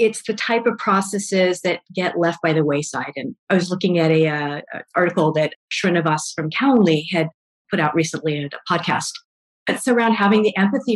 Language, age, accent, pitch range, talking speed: English, 40-59, American, 165-205 Hz, 190 wpm